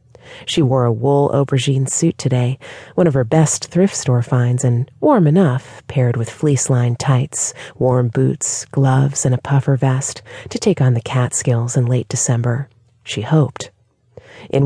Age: 30-49